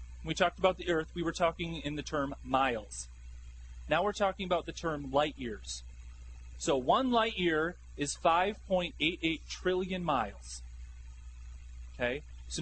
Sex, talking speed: male, 145 wpm